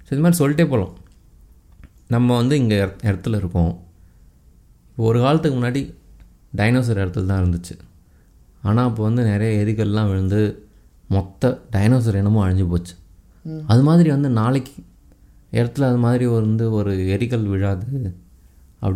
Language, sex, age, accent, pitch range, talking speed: Tamil, male, 20-39, native, 90-115 Hz, 130 wpm